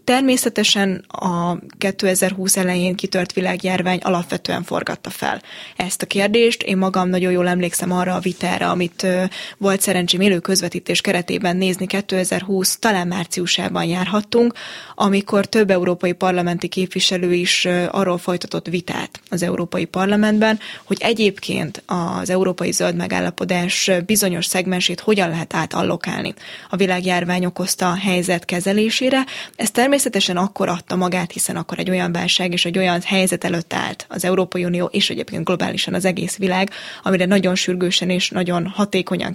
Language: Hungarian